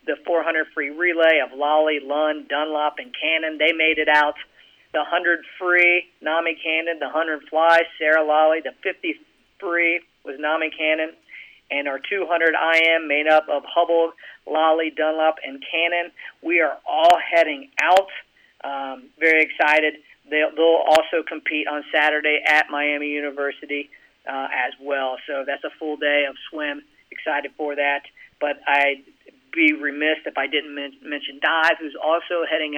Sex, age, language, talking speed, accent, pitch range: male, 40-59, English, 155 wpm, American, 145-165 Hz